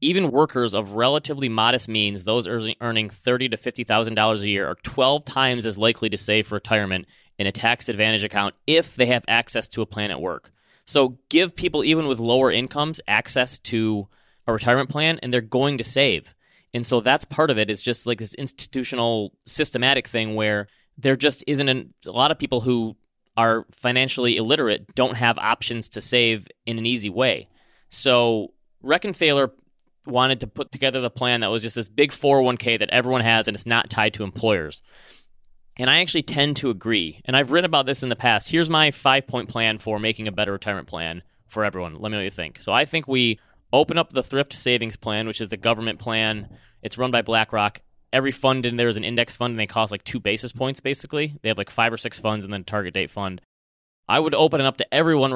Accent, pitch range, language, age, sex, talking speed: American, 110-130 Hz, English, 30-49, male, 220 wpm